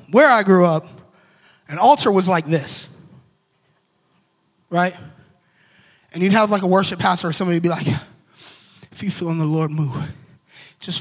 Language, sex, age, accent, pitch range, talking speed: English, male, 20-39, American, 160-195 Hz, 165 wpm